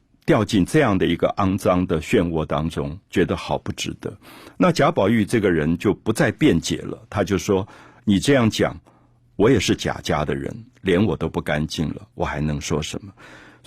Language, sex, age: Chinese, male, 50-69